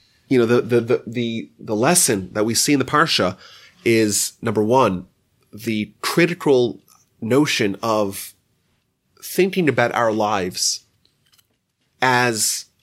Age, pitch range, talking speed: 30-49, 110-155 Hz, 120 wpm